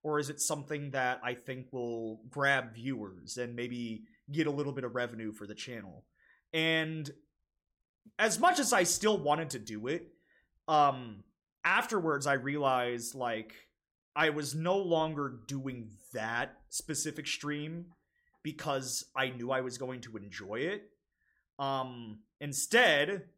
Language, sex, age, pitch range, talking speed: English, male, 30-49, 115-155 Hz, 140 wpm